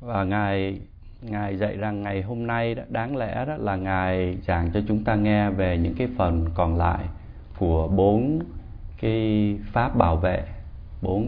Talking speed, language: 170 wpm, Vietnamese